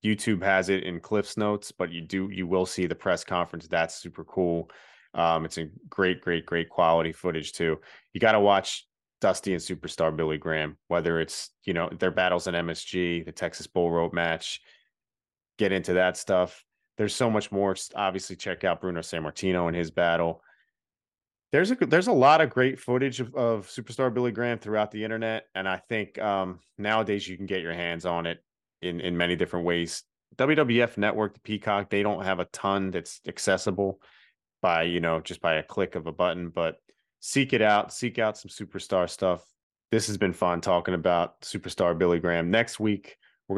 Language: English